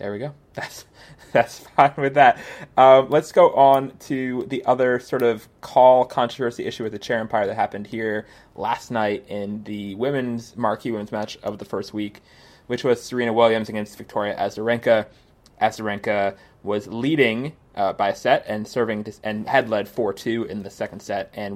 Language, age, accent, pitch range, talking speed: English, 20-39, American, 105-130 Hz, 180 wpm